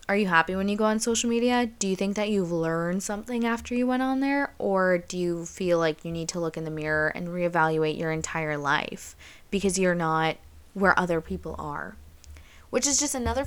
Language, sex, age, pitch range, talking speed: English, female, 20-39, 170-210 Hz, 220 wpm